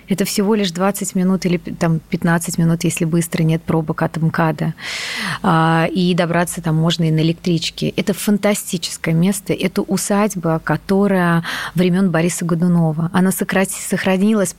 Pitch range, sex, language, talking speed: 170-195 Hz, female, Russian, 135 wpm